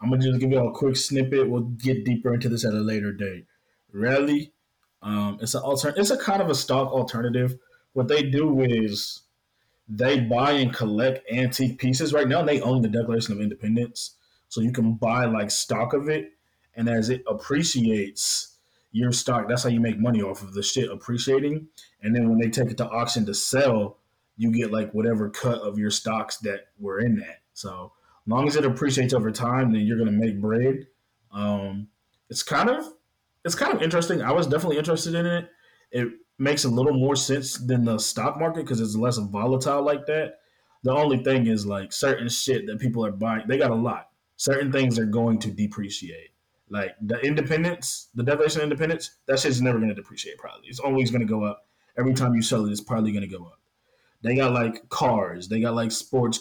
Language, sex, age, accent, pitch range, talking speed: English, male, 20-39, American, 110-135 Hz, 205 wpm